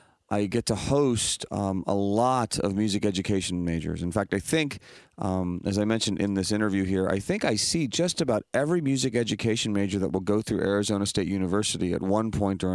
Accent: American